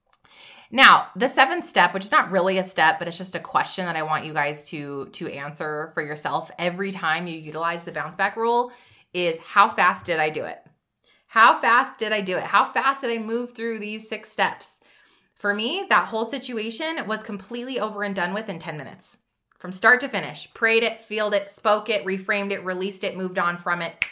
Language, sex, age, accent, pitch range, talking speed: English, female, 20-39, American, 180-225 Hz, 215 wpm